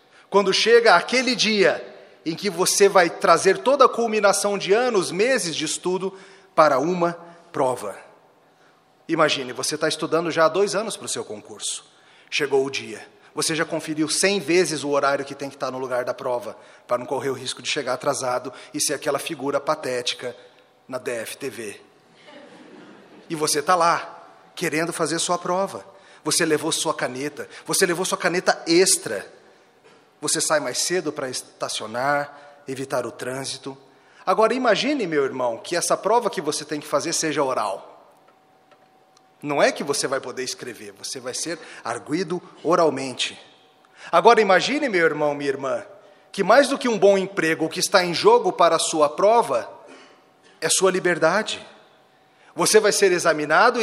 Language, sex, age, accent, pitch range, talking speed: Portuguese, male, 40-59, Brazilian, 150-200 Hz, 165 wpm